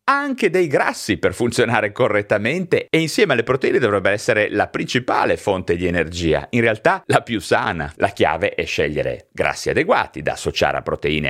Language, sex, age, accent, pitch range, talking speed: Italian, male, 30-49, native, 105-160 Hz, 170 wpm